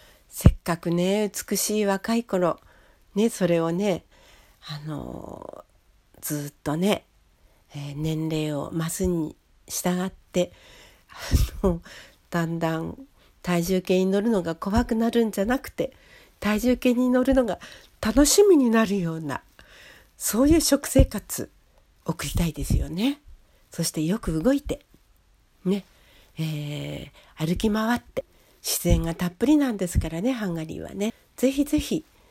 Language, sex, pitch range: Japanese, female, 160-210 Hz